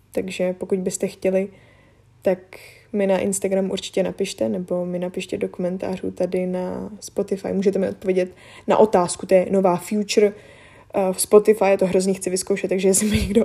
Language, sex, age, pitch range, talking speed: Czech, female, 10-29, 185-210 Hz, 170 wpm